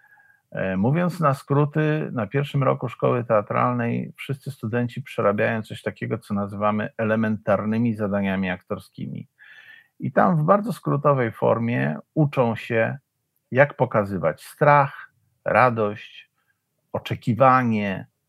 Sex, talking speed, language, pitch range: male, 100 wpm, Polish, 105-145 Hz